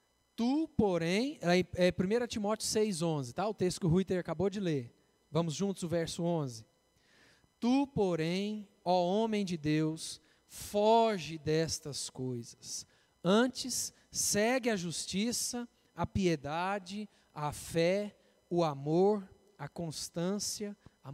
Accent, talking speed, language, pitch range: Brazilian, 120 wpm, Portuguese, 165-220 Hz